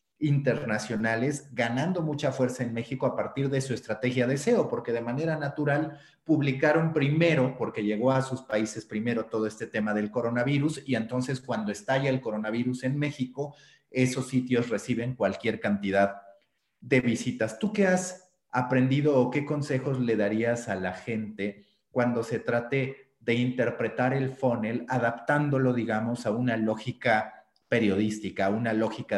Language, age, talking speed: Spanish, 40-59, 150 wpm